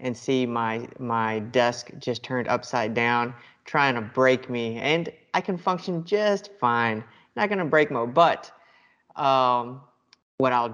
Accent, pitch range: American, 125-155 Hz